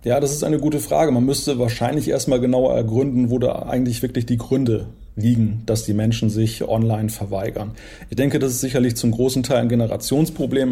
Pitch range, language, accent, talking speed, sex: 115-130 Hz, German, German, 195 wpm, male